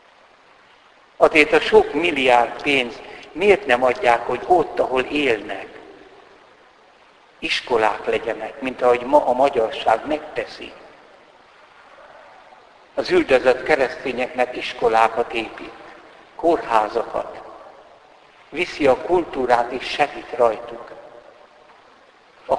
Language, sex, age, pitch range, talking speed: Hungarian, male, 60-79, 120-160 Hz, 90 wpm